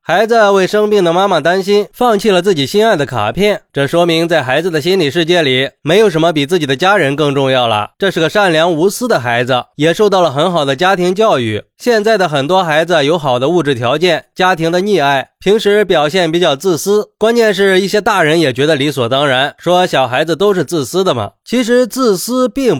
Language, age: Chinese, 20-39